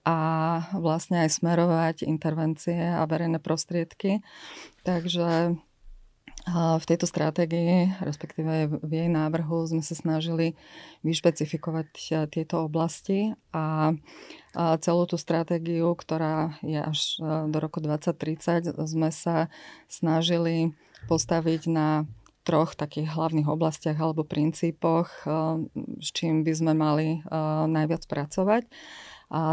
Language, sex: Slovak, female